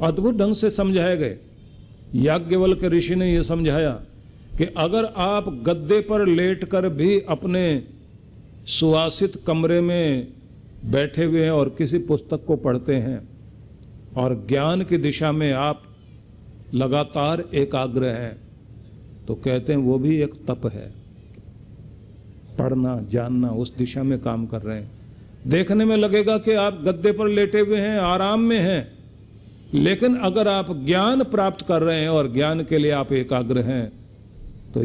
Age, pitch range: 50-69, 120-165 Hz